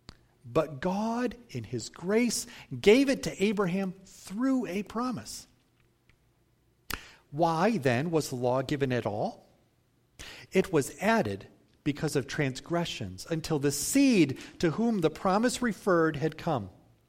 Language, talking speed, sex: English, 125 wpm, male